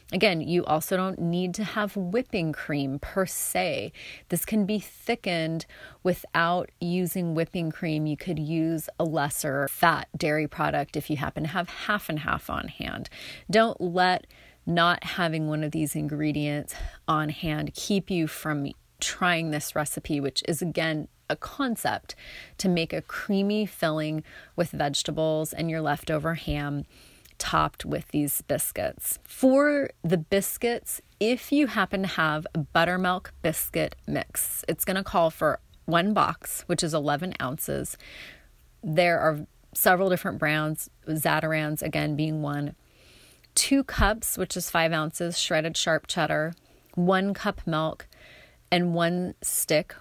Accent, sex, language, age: American, female, English, 30-49